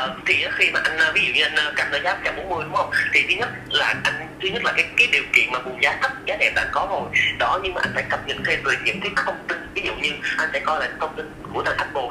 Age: 30-49